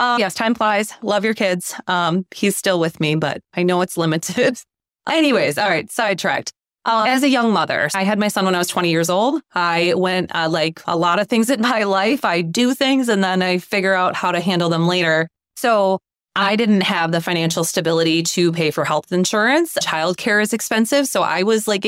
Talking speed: 220 wpm